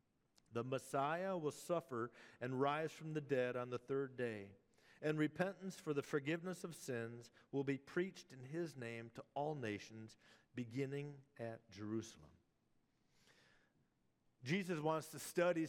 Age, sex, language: 50-69, male, English